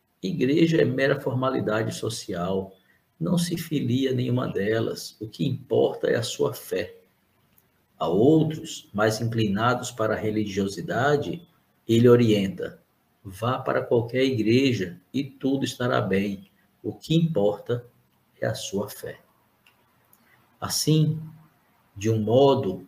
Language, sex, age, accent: Portuguese, male, 50-69, Brazilian